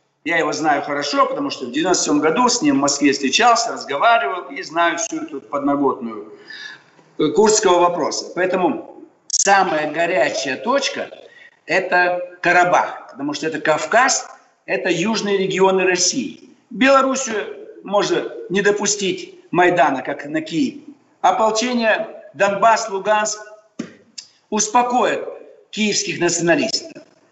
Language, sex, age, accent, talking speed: Russian, male, 50-69, native, 110 wpm